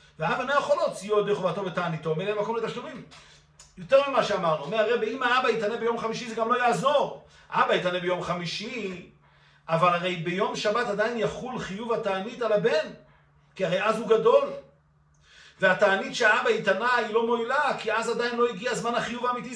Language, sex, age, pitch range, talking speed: Hebrew, male, 50-69, 160-215 Hz, 175 wpm